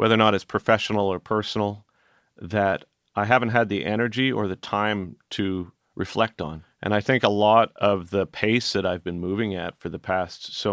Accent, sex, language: American, male, English